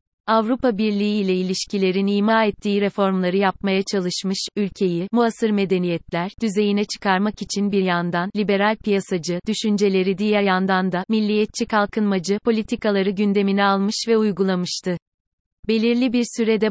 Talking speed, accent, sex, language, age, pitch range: 120 wpm, native, female, Turkish, 30-49, 190-220 Hz